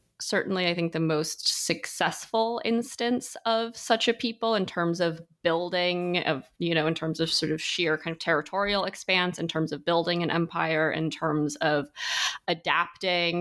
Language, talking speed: English, 170 wpm